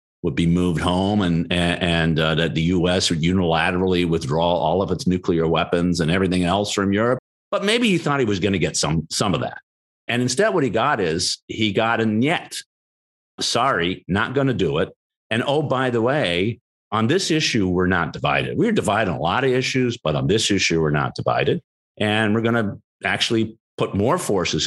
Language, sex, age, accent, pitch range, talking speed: English, male, 50-69, American, 85-130 Hz, 205 wpm